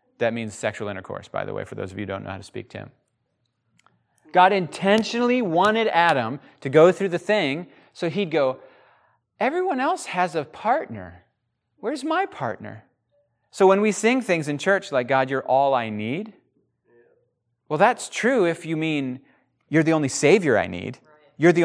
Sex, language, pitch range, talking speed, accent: male, English, 125-200 Hz, 185 wpm, American